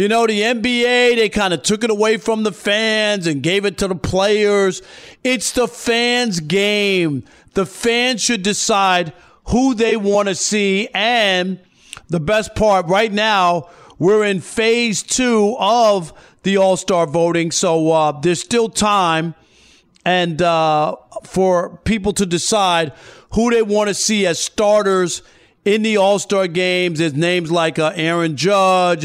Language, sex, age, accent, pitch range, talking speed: English, male, 40-59, American, 170-215 Hz, 155 wpm